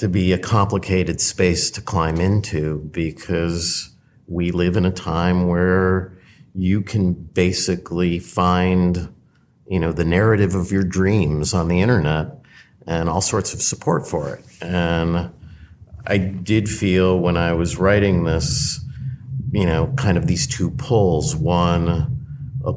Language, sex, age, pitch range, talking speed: English, male, 50-69, 85-95 Hz, 140 wpm